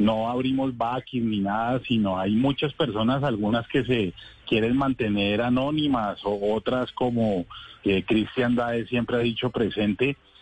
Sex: male